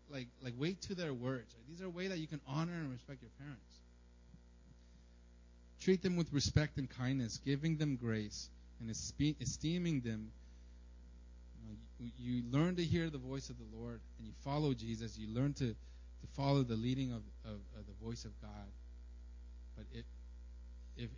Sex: male